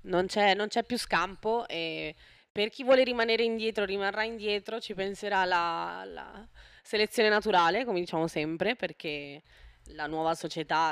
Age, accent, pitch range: 20-39, native, 155-190 Hz